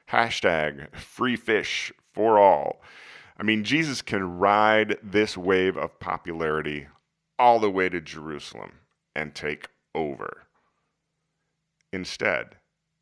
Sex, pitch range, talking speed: male, 80-110 Hz, 105 wpm